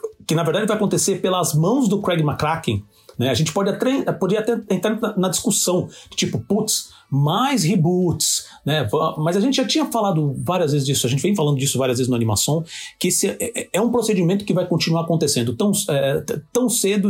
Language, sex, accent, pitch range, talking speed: Portuguese, male, Brazilian, 150-210 Hz, 195 wpm